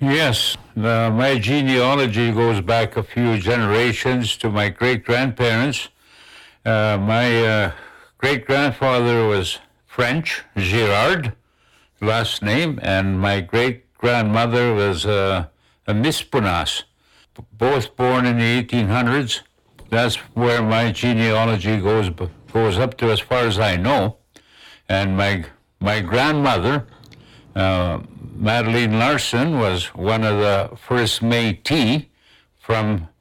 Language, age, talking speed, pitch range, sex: English, 60-79, 105 wpm, 95-120 Hz, male